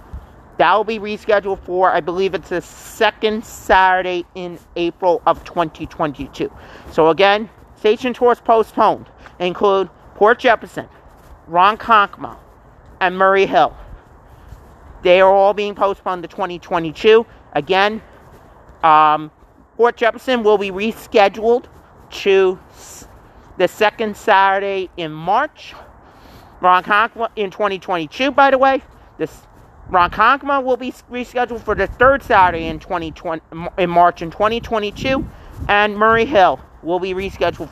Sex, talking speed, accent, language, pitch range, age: male, 120 wpm, American, English, 175-220 Hz, 40-59